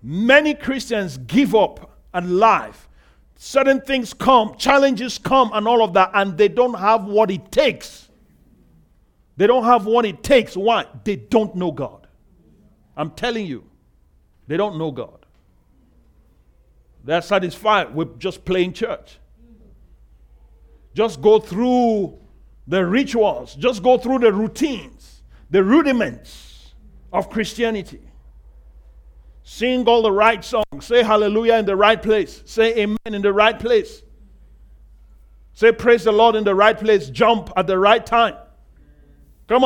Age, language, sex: 50-69, English, male